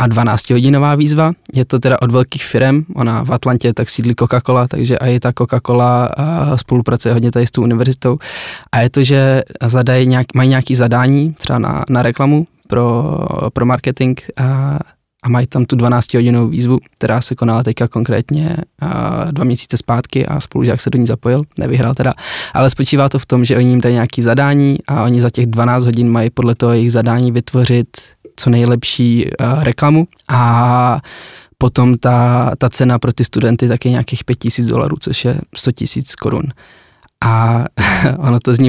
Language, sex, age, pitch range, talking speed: Czech, male, 20-39, 120-135 Hz, 175 wpm